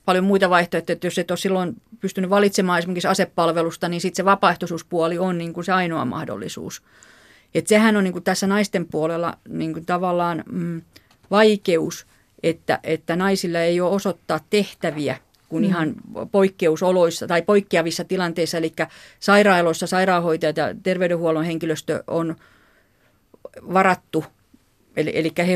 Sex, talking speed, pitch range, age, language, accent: female, 135 wpm, 165-185 Hz, 40-59, Finnish, native